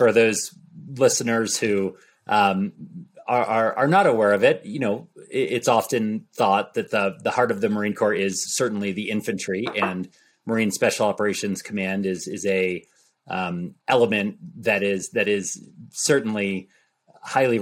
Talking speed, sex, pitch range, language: 145 wpm, male, 100-130 Hz, English